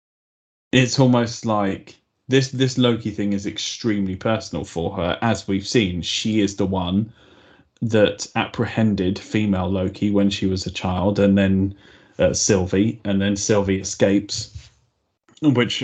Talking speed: 140 wpm